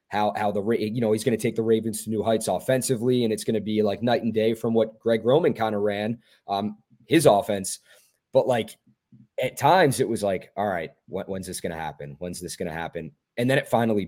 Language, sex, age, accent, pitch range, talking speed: English, male, 20-39, American, 105-135 Hz, 245 wpm